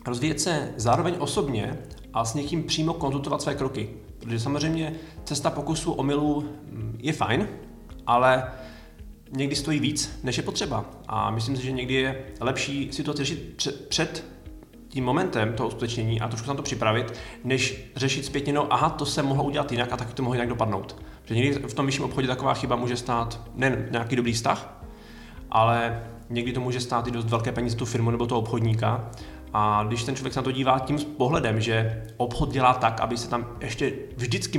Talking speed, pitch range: 185 wpm, 115-140 Hz